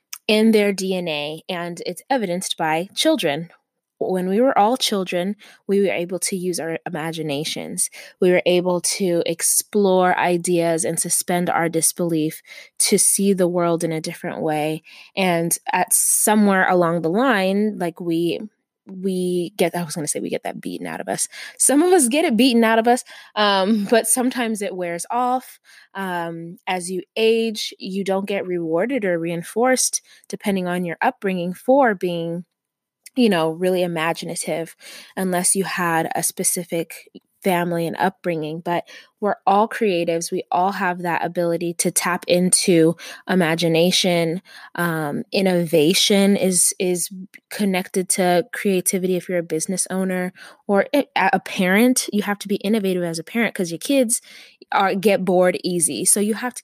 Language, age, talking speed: English, 20-39, 160 wpm